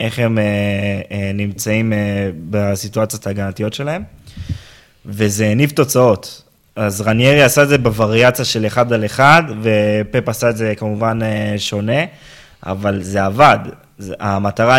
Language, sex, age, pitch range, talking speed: Hebrew, male, 20-39, 105-130 Hz, 135 wpm